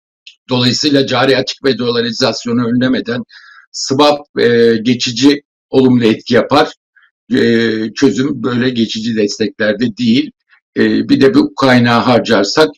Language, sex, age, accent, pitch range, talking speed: Turkish, male, 60-79, native, 125-155 Hz, 115 wpm